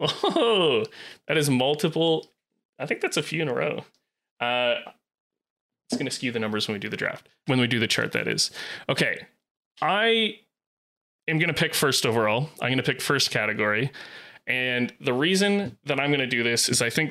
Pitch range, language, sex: 120-145 Hz, English, male